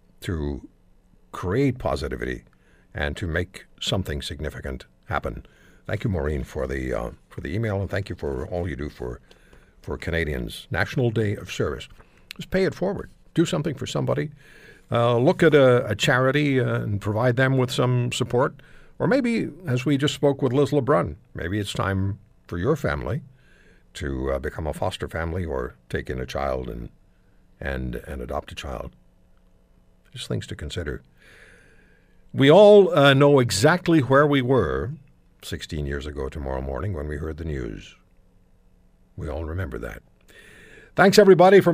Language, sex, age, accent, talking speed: English, male, 60-79, American, 165 wpm